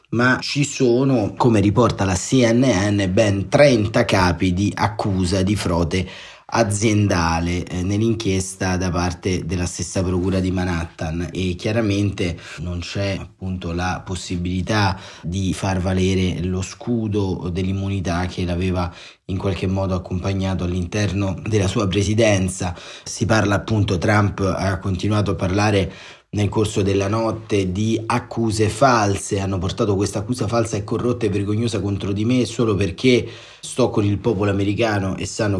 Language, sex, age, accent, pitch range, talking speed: Italian, male, 30-49, native, 90-110 Hz, 140 wpm